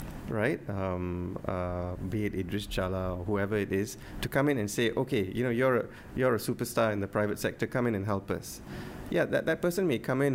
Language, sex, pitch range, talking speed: English, male, 100-120 Hz, 230 wpm